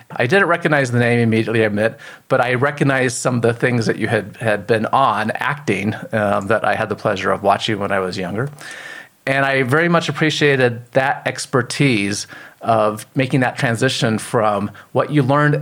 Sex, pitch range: male, 115-150 Hz